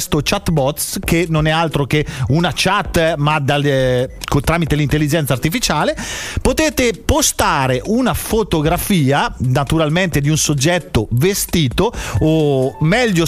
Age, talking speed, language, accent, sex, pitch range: 40-59, 115 wpm, Italian, native, male, 150-205 Hz